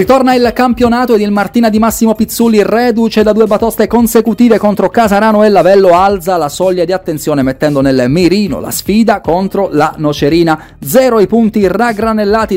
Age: 30-49